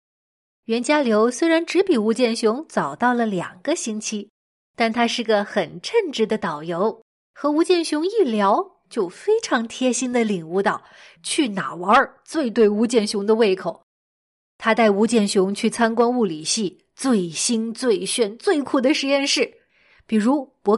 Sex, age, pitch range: female, 20-39, 210-280 Hz